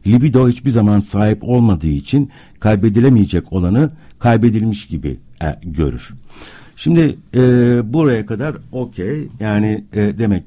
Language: Turkish